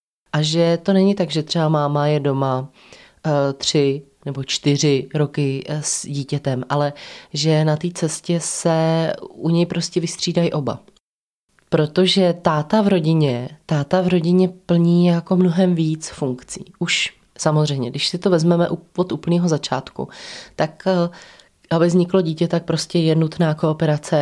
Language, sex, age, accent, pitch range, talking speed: Czech, female, 20-39, native, 145-175 Hz, 140 wpm